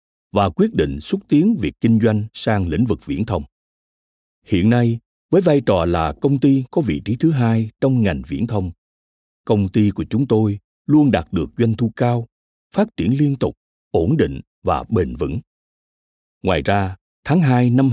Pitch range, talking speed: 85-125 Hz, 185 wpm